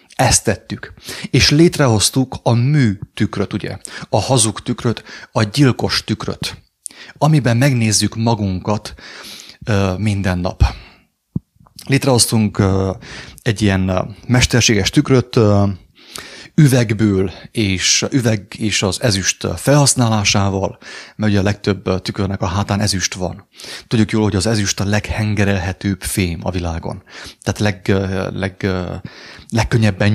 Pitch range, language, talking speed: 100-130 Hz, English, 105 wpm